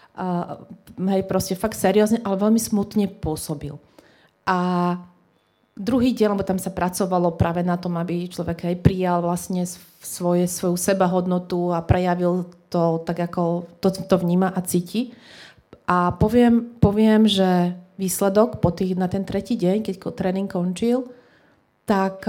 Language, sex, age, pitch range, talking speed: Slovak, female, 30-49, 180-215 Hz, 145 wpm